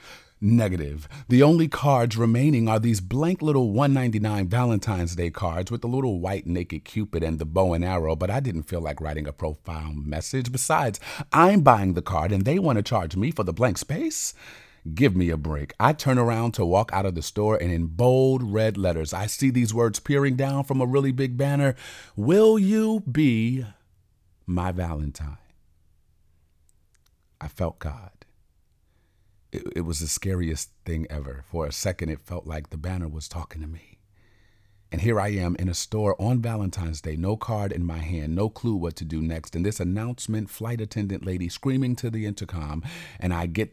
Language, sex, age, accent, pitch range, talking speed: English, male, 40-59, American, 85-120 Hz, 190 wpm